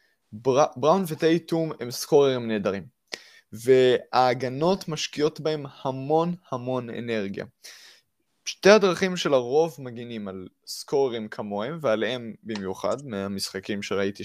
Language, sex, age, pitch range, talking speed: Hebrew, male, 20-39, 115-165 Hz, 100 wpm